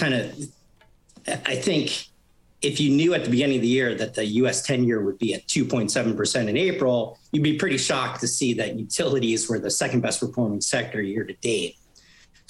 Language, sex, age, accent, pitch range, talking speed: English, male, 50-69, American, 115-135 Hz, 200 wpm